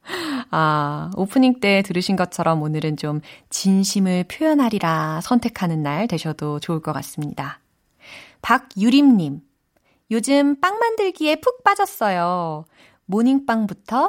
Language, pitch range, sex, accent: Korean, 165-245 Hz, female, native